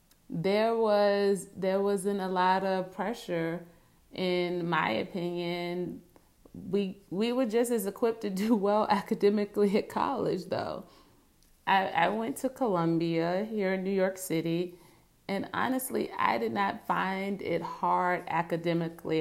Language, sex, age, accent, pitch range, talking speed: English, female, 30-49, American, 170-200 Hz, 135 wpm